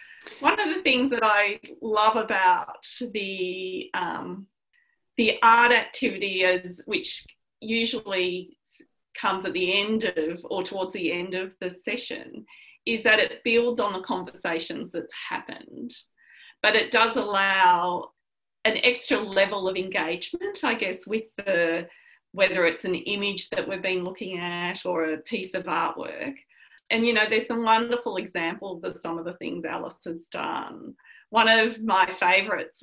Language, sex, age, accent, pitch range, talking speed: English, female, 30-49, Australian, 180-235 Hz, 150 wpm